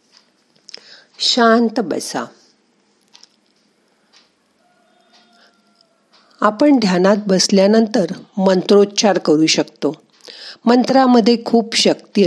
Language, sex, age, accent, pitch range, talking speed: Marathi, female, 50-69, native, 170-230 Hz, 55 wpm